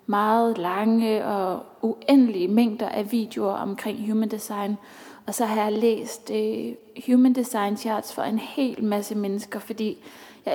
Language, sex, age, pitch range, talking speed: English, female, 20-39, 215-240 Hz, 140 wpm